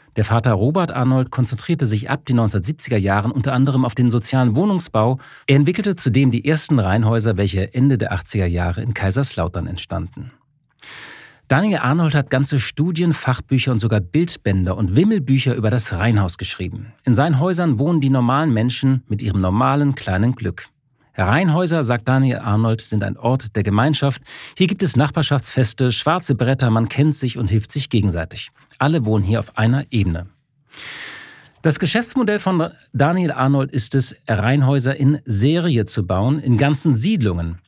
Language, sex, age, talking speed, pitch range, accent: German, male, 40-59, 160 wpm, 110-145 Hz, German